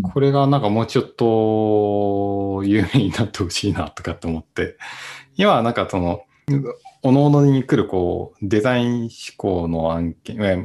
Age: 20-39